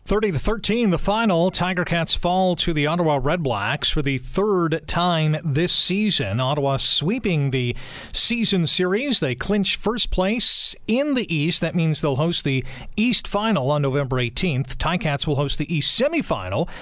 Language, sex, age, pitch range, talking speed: English, male, 40-59, 140-190 Hz, 160 wpm